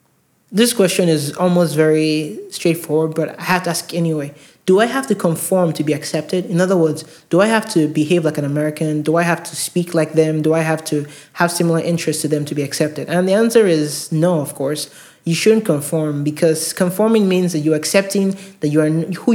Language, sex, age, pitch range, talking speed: English, male, 20-39, 155-180 Hz, 215 wpm